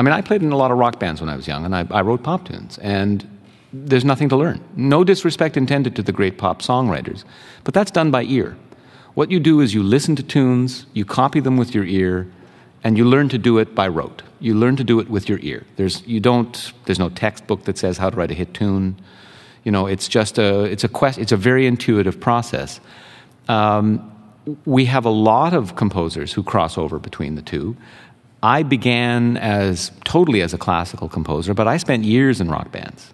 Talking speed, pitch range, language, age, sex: 225 wpm, 95-130 Hz, English, 40-59, male